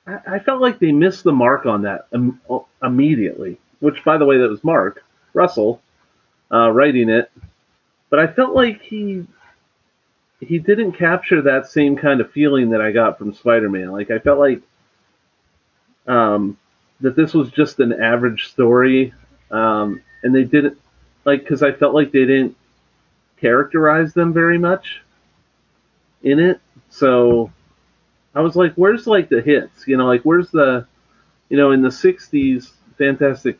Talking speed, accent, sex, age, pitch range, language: 155 wpm, American, male, 40-59, 120-165 Hz, English